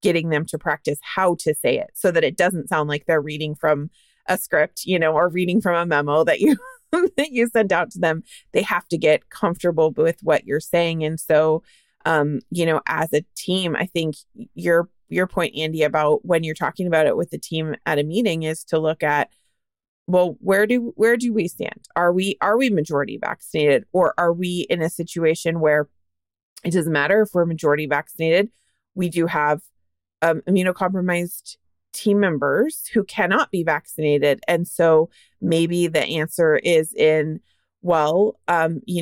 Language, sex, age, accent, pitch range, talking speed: English, female, 20-39, American, 155-195 Hz, 185 wpm